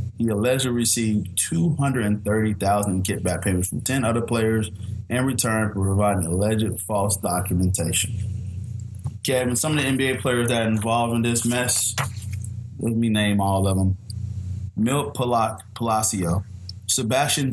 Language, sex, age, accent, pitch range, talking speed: English, male, 20-39, American, 100-120 Hz, 140 wpm